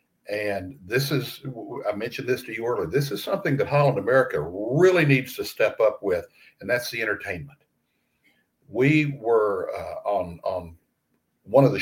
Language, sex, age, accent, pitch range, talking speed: English, male, 60-79, American, 125-195 Hz, 170 wpm